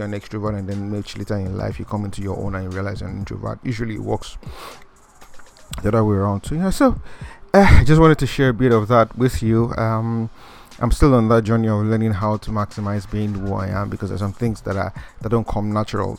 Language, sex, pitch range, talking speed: English, male, 100-115 Hz, 255 wpm